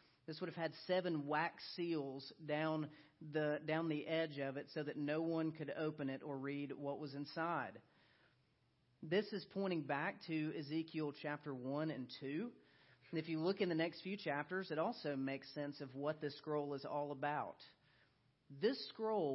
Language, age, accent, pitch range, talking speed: English, 40-59, American, 140-175 Hz, 180 wpm